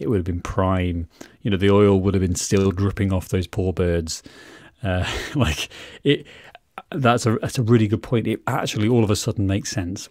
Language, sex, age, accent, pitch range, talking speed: English, male, 30-49, British, 95-125 Hz, 215 wpm